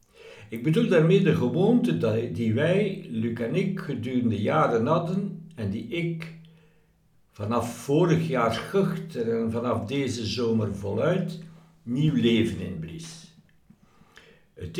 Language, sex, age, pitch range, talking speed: Dutch, male, 60-79, 115-170 Hz, 120 wpm